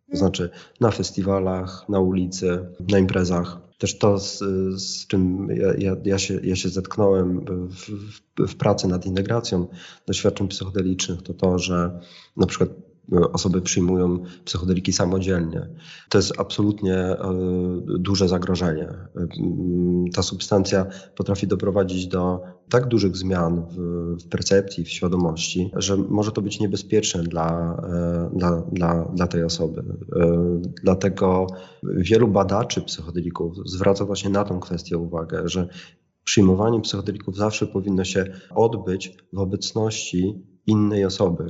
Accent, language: native, Polish